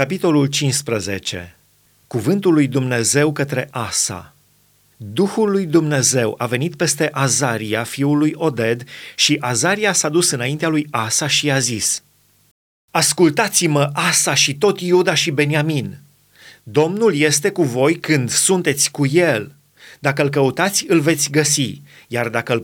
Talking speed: 135 wpm